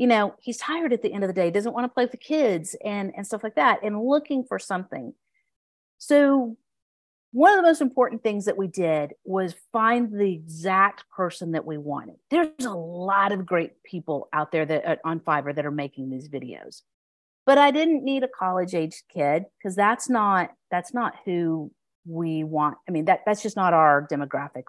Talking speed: 205 wpm